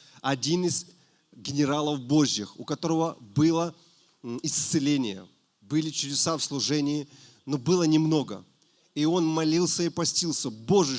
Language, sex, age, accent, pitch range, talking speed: Russian, male, 30-49, native, 135-165 Hz, 115 wpm